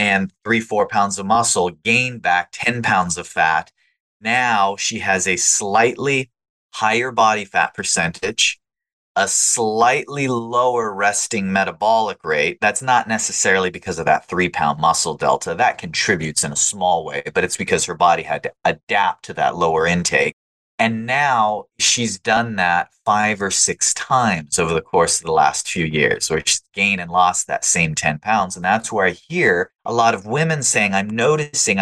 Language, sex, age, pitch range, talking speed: English, male, 30-49, 90-130 Hz, 175 wpm